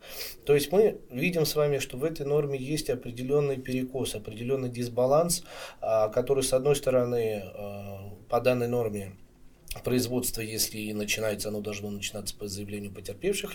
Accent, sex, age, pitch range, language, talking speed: native, male, 20-39, 110-140 Hz, Russian, 140 wpm